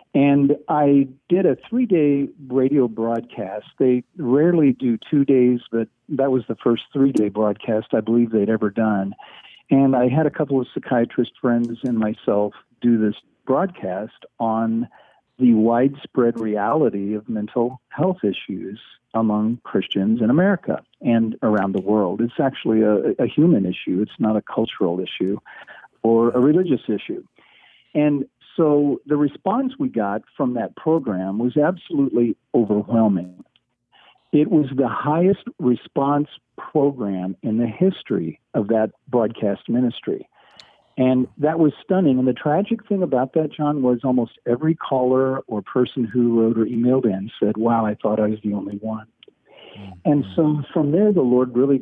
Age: 50-69